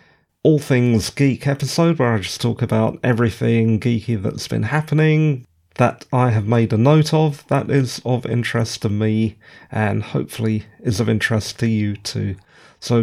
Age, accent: 40-59, British